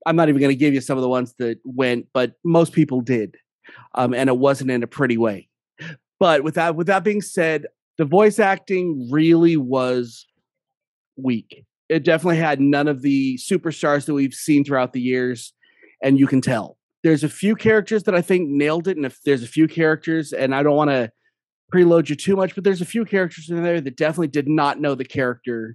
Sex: male